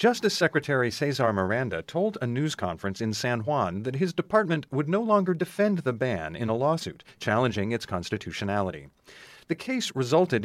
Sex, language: male, English